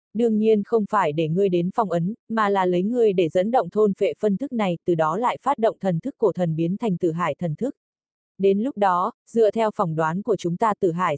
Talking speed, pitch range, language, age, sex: 260 wpm, 180-215 Hz, Vietnamese, 20-39, female